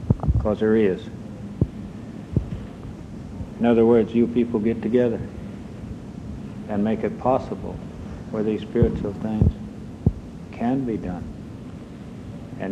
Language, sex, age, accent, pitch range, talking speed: English, male, 60-79, American, 105-120 Hz, 105 wpm